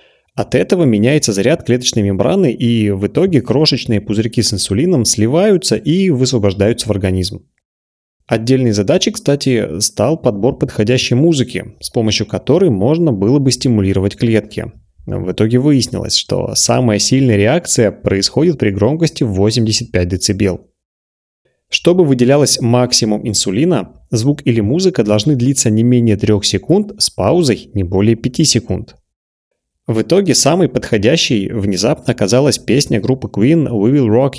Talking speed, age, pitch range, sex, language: 135 wpm, 20-39, 100-135 Hz, male, Russian